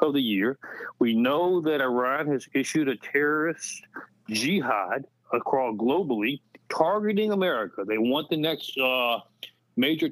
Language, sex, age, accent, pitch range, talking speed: English, male, 60-79, American, 125-175 Hz, 130 wpm